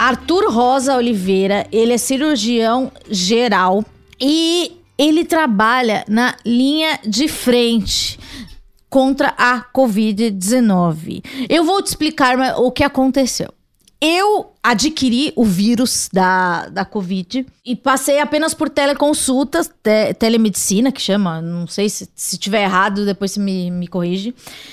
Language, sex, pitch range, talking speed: Portuguese, female, 220-305 Hz, 125 wpm